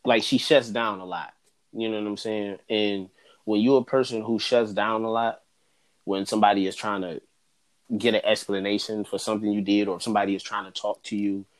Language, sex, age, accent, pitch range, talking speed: English, male, 20-39, American, 105-125 Hz, 210 wpm